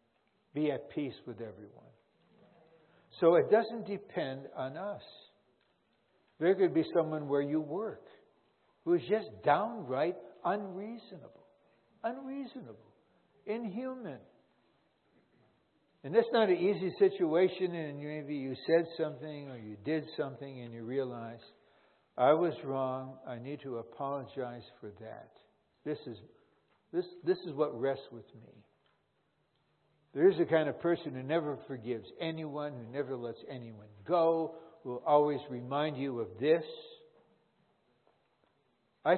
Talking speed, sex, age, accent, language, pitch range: 125 wpm, male, 60-79, American, English, 135-205 Hz